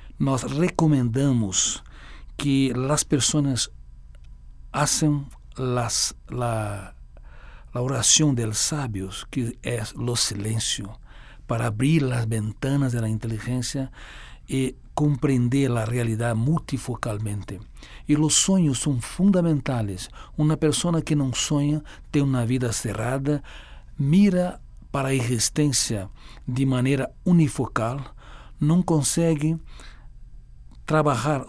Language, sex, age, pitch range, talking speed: Spanish, male, 60-79, 110-140 Hz, 100 wpm